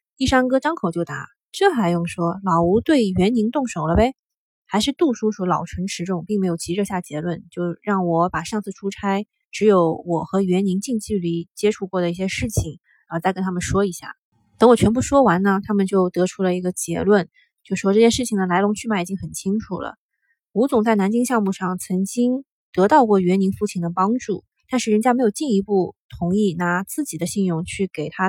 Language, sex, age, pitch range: Chinese, female, 20-39, 180-230 Hz